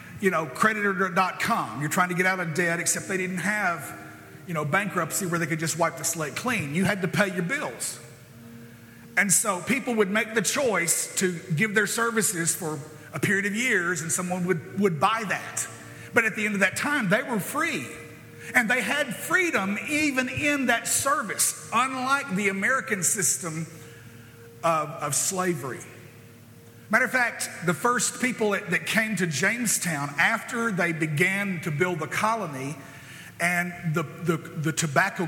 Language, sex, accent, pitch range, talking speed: English, male, American, 160-205 Hz, 170 wpm